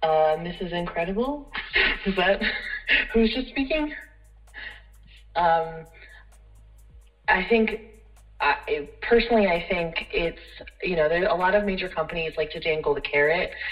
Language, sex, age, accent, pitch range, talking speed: English, female, 20-39, American, 160-215 Hz, 130 wpm